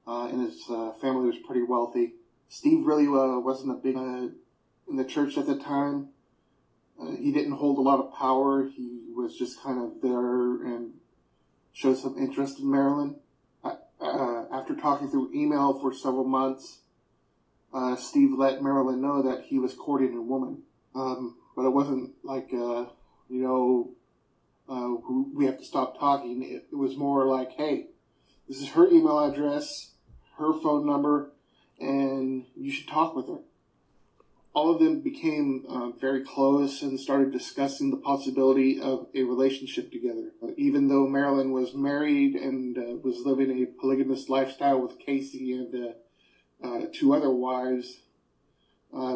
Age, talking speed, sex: 30-49, 160 wpm, male